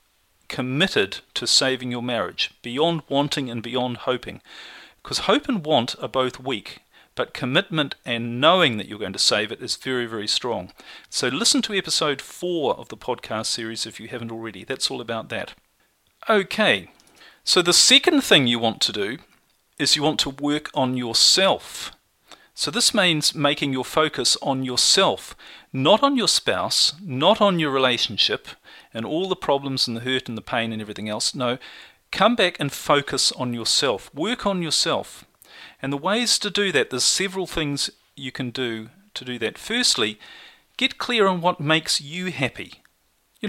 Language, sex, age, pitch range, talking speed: English, male, 40-59, 125-185 Hz, 175 wpm